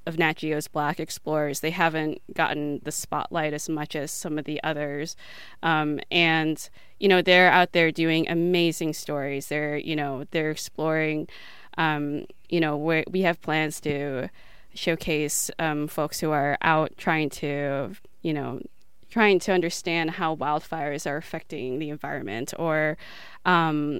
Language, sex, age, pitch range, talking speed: English, female, 20-39, 150-170 Hz, 155 wpm